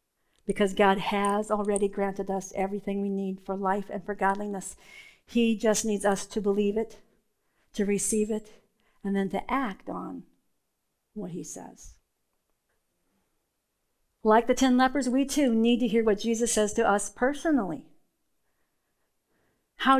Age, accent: 50-69, American